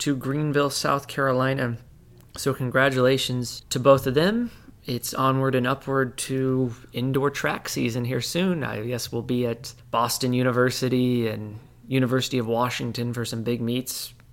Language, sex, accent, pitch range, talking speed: English, male, American, 120-145 Hz, 145 wpm